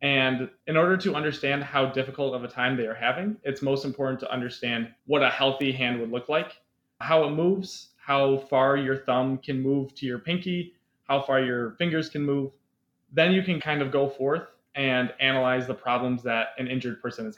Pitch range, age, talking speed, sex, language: 125-150 Hz, 20-39, 205 wpm, male, English